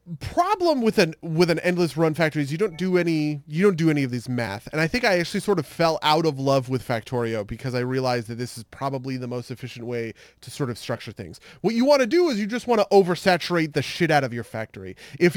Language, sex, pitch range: English, male, 130-180 Hz